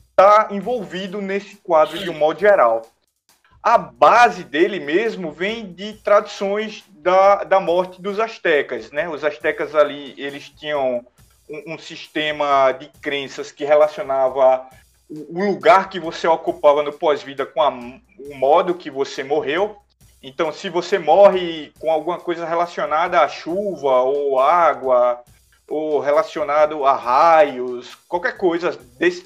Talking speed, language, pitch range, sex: 135 wpm, Portuguese, 145-195 Hz, male